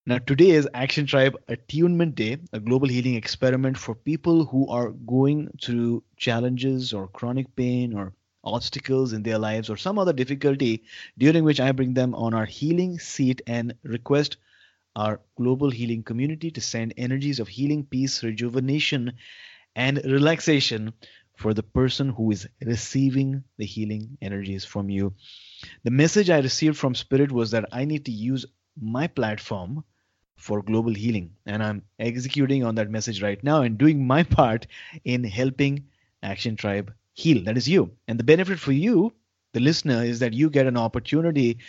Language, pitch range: English, 110-135 Hz